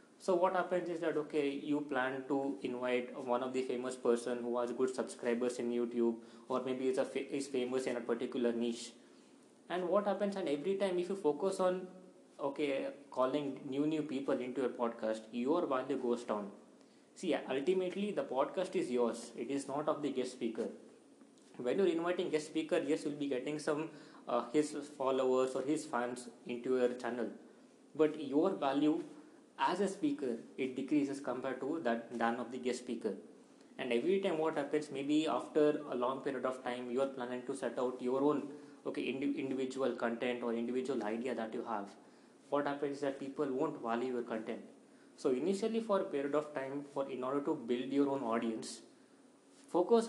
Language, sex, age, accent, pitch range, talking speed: English, male, 20-39, Indian, 125-155 Hz, 185 wpm